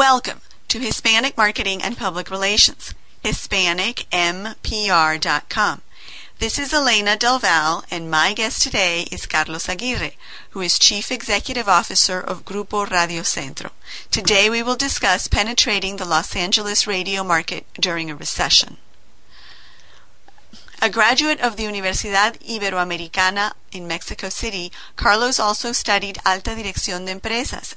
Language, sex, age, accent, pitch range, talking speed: English, female, 40-59, American, 180-225 Hz, 125 wpm